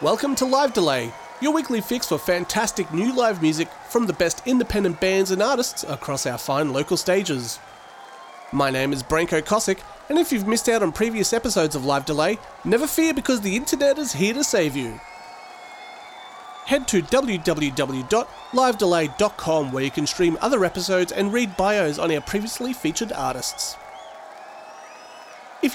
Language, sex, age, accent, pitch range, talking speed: English, male, 30-49, Australian, 155-230 Hz, 160 wpm